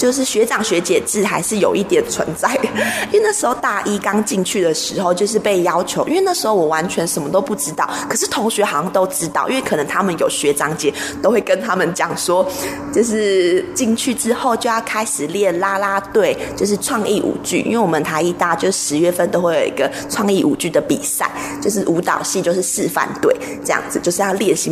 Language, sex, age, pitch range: Chinese, female, 20-39, 175-250 Hz